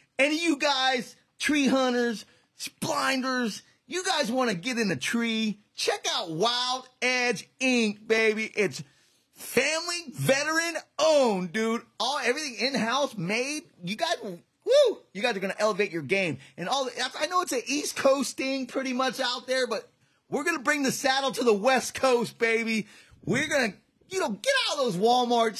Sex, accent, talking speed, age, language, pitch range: male, American, 180 wpm, 30-49, English, 195-260 Hz